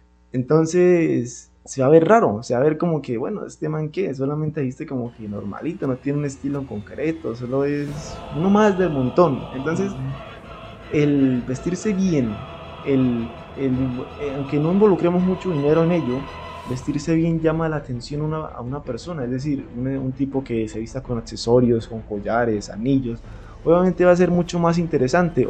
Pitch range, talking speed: 120-160 Hz, 165 wpm